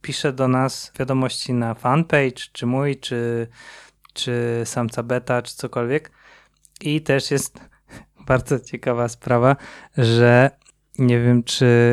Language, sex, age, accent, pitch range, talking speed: Polish, male, 20-39, native, 120-135 Hz, 120 wpm